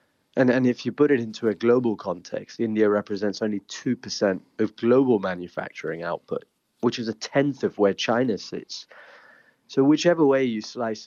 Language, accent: English, British